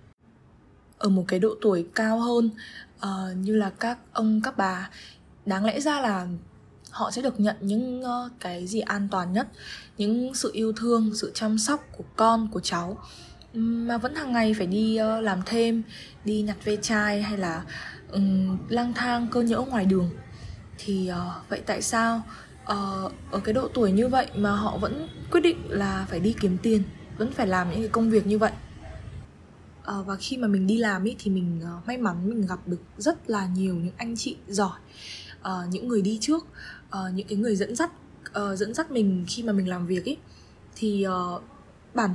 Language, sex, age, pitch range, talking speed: Vietnamese, female, 20-39, 190-230 Hz, 190 wpm